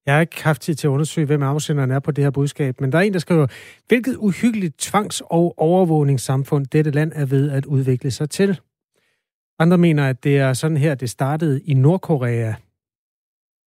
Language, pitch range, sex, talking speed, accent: Danish, 130-160 Hz, male, 200 wpm, native